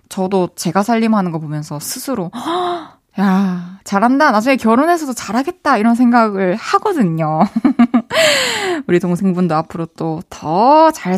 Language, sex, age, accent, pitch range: Korean, female, 20-39, native, 180-265 Hz